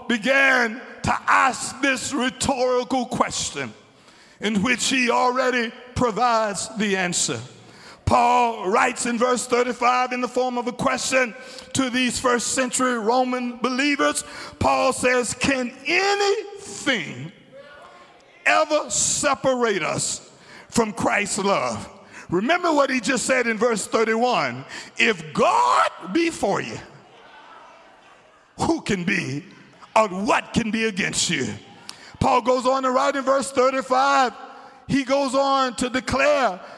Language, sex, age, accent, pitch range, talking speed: English, male, 50-69, American, 235-275 Hz, 120 wpm